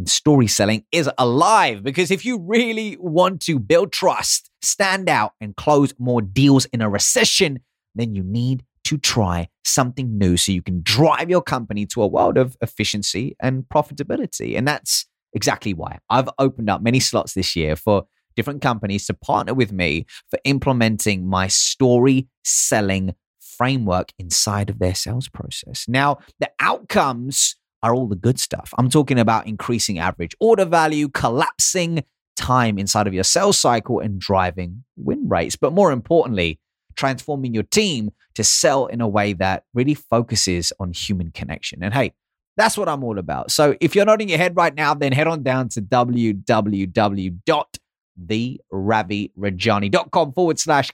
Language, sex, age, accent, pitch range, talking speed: English, male, 30-49, British, 100-145 Hz, 160 wpm